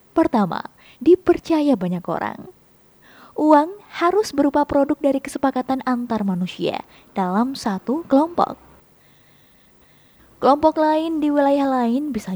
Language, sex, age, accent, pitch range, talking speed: Indonesian, female, 20-39, native, 245-320 Hz, 100 wpm